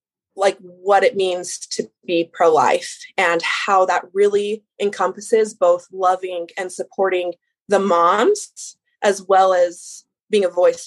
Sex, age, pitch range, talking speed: female, 20-39, 185-255 Hz, 140 wpm